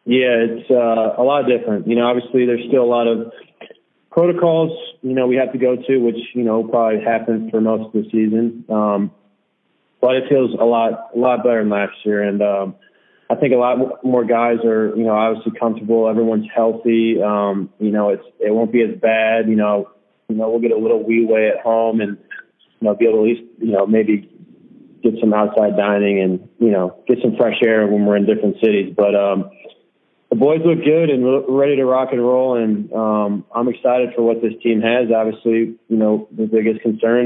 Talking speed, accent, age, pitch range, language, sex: 215 wpm, American, 20-39, 105-120 Hz, English, male